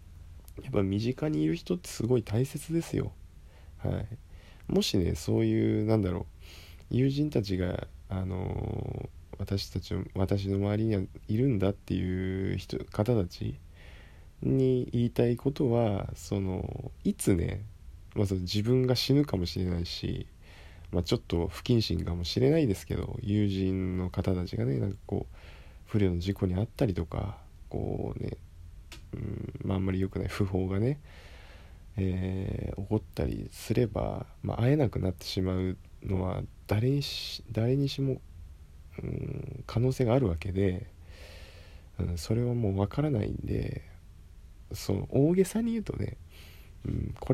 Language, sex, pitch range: Japanese, male, 85-120 Hz